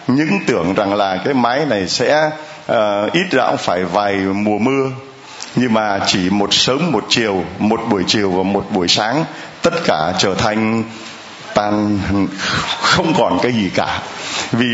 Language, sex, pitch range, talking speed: Vietnamese, male, 100-145 Hz, 165 wpm